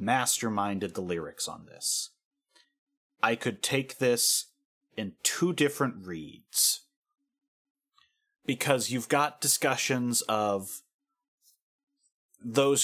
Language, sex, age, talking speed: English, male, 30-49, 90 wpm